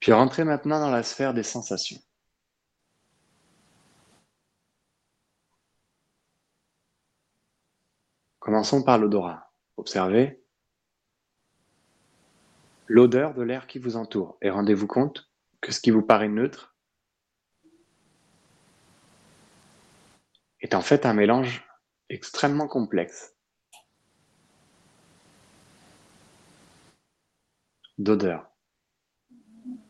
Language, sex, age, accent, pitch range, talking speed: French, male, 40-59, French, 105-160 Hz, 70 wpm